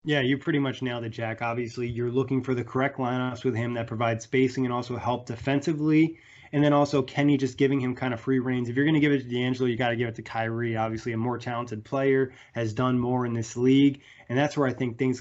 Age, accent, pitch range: 20-39, American, 120-135 Hz